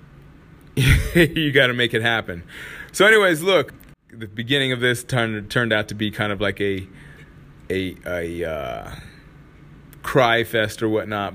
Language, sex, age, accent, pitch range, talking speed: English, male, 30-49, American, 95-130 Hz, 150 wpm